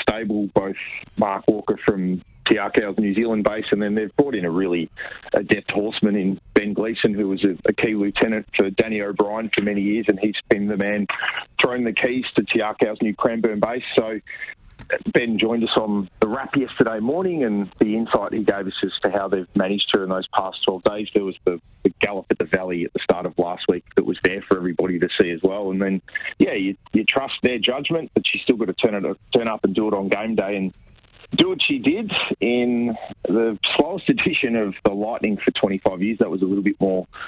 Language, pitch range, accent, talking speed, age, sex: English, 95-110 Hz, Australian, 220 wpm, 40-59, male